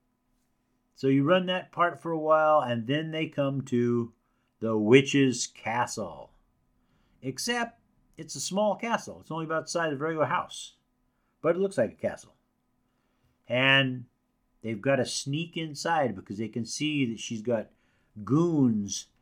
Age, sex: 50-69, male